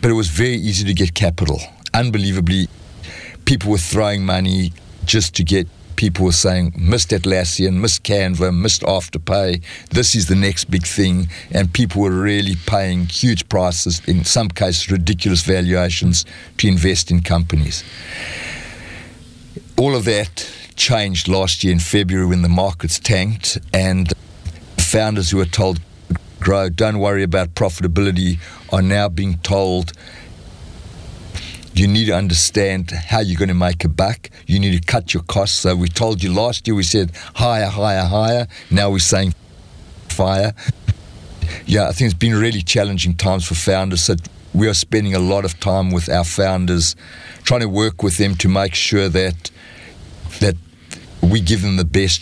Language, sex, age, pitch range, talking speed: English, male, 60-79, 85-100 Hz, 160 wpm